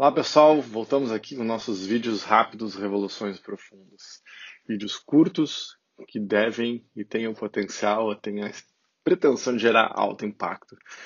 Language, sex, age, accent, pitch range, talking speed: Portuguese, male, 20-39, Brazilian, 105-135 Hz, 135 wpm